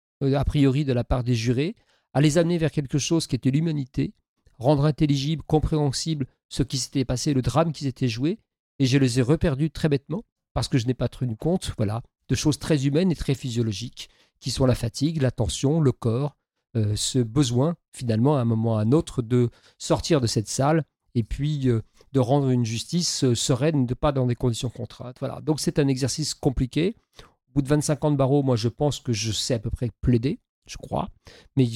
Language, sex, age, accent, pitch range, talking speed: French, male, 50-69, French, 125-150 Hz, 215 wpm